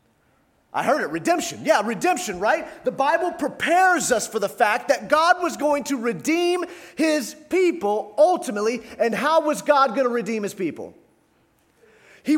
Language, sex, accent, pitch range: English, male, American, 190-290 Hz